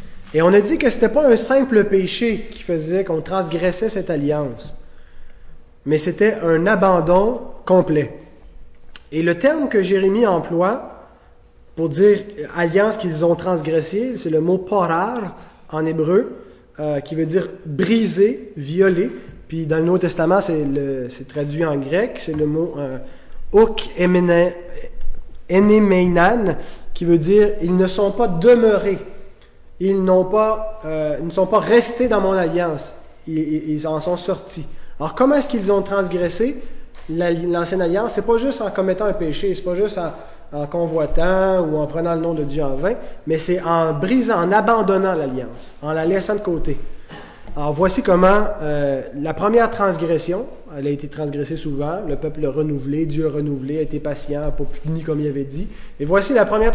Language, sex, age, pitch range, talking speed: French, male, 20-39, 155-200 Hz, 170 wpm